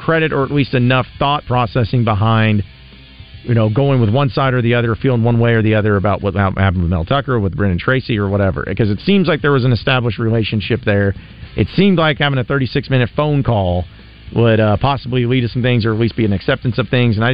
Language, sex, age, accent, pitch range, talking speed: English, male, 40-59, American, 105-135 Hz, 245 wpm